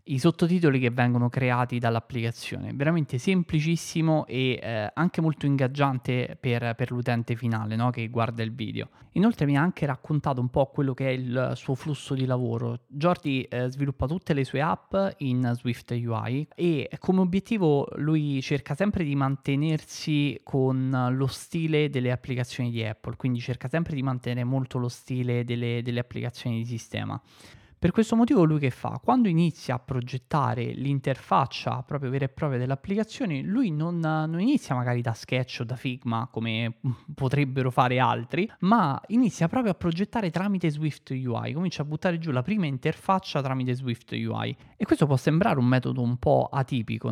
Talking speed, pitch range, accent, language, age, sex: 170 wpm, 125-160 Hz, native, Italian, 20-39, male